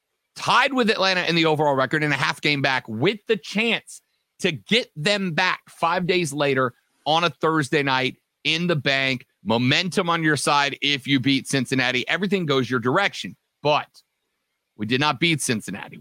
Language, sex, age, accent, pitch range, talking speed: English, male, 40-59, American, 135-185 Hz, 175 wpm